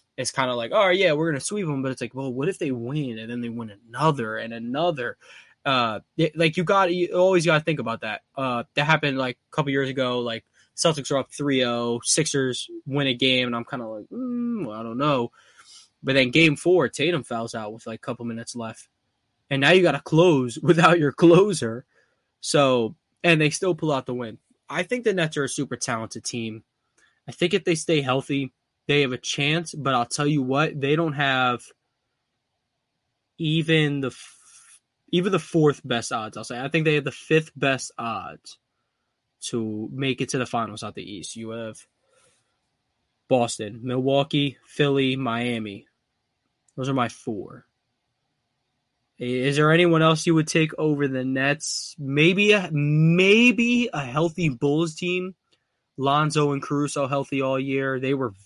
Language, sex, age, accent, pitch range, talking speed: English, male, 20-39, American, 125-160 Hz, 190 wpm